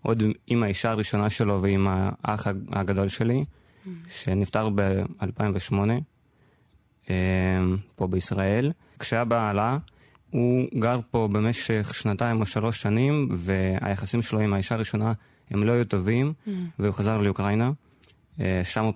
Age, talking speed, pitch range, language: 20-39, 115 wpm, 100-120 Hz, Hebrew